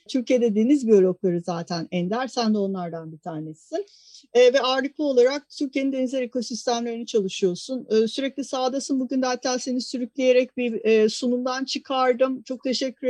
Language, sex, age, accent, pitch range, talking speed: Turkish, female, 50-69, native, 220-270 Hz, 140 wpm